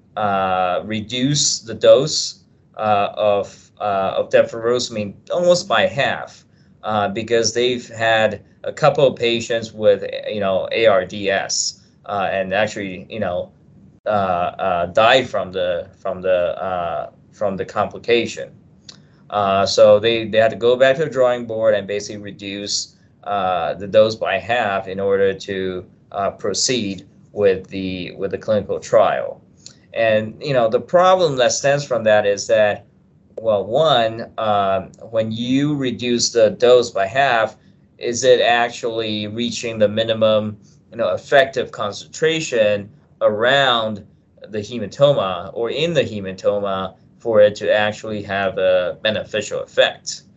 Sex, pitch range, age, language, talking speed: male, 100-125 Hz, 20-39, English, 140 wpm